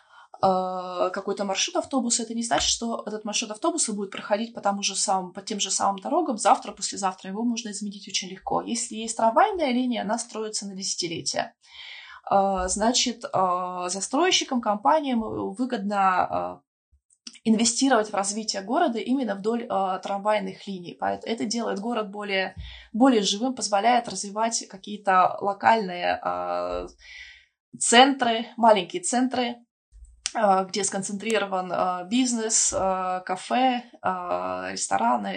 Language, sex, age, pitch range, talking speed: Russian, female, 20-39, 190-240 Hz, 110 wpm